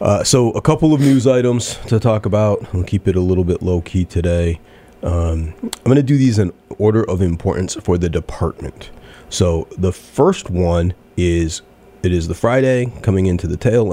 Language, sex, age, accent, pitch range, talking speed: English, male, 30-49, American, 85-100 Hz, 190 wpm